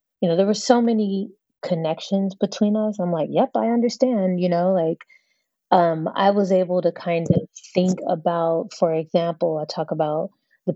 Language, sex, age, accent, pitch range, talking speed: English, female, 30-49, American, 155-190 Hz, 180 wpm